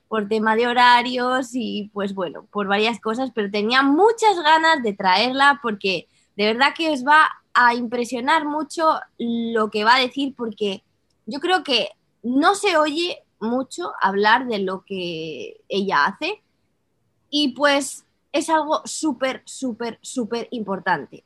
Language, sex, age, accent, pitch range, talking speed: Spanish, female, 20-39, Spanish, 210-280 Hz, 145 wpm